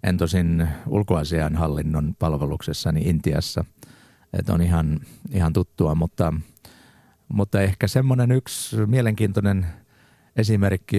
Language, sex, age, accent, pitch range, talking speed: Finnish, male, 50-69, native, 90-110 Hz, 100 wpm